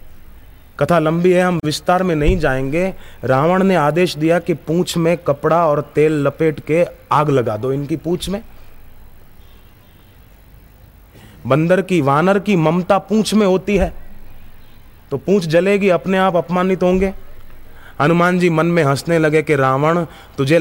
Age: 30-49